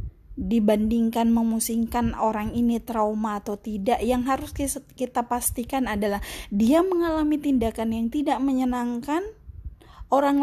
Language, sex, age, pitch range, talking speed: Indonesian, female, 20-39, 205-255 Hz, 110 wpm